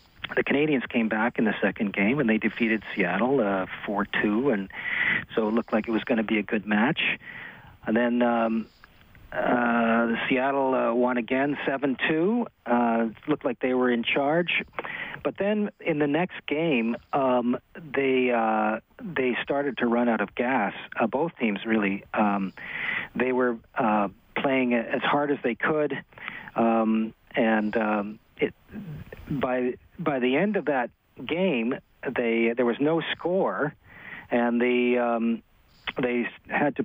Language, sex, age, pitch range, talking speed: English, male, 40-59, 115-140 Hz, 160 wpm